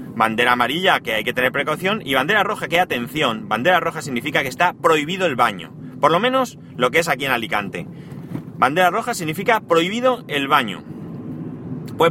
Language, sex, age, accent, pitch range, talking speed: Spanish, male, 30-49, Spanish, 130-175 Hz, 180 wpm